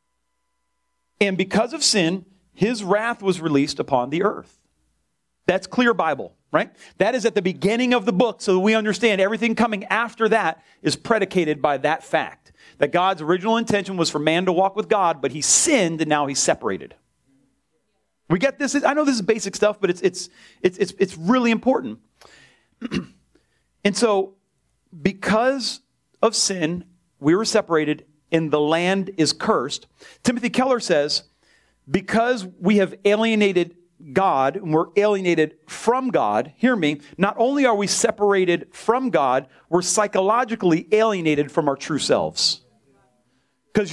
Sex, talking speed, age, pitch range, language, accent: male, 155 wpm, 40-59, 165-225 Hz, English, American